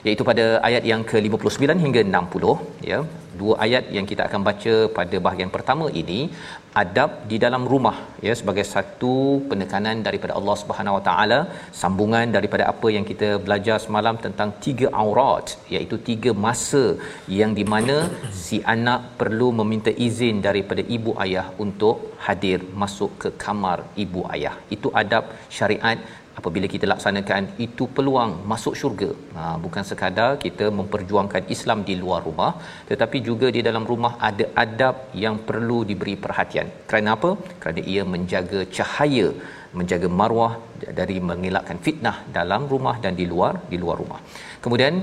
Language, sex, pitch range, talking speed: Malayalam, male, 100-120 Hz, 150 wpm